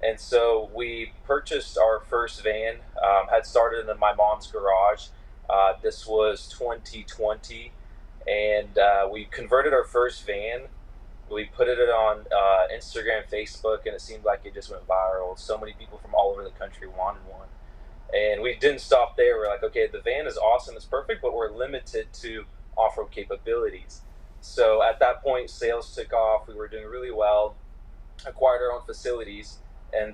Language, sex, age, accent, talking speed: English, male, 20-39, American, 175 wpm